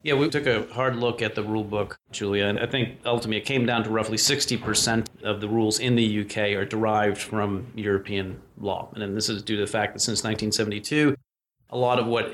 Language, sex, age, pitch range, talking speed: English, male, 30-49, 105-115 Hz, 220 wpm